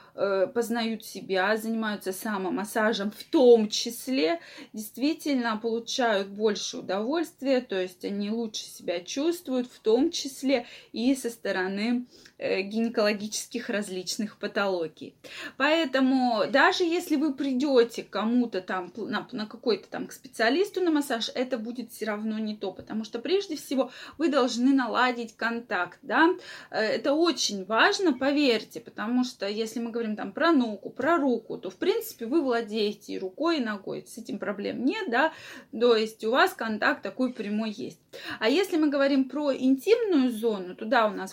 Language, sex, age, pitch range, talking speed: Russian, female, 20-39, 220-275 Hz, 150 wpm